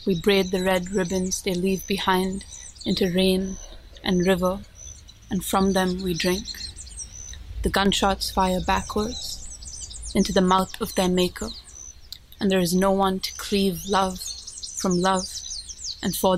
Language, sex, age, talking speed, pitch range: English, female, 30-49, 145 wpm, 180-200 Hz